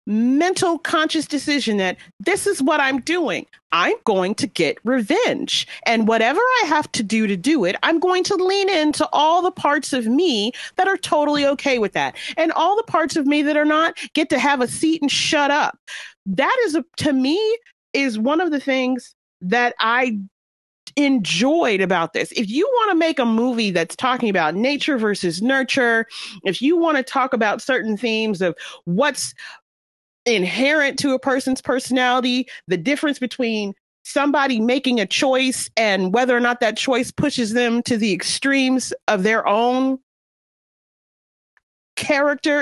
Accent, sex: American, female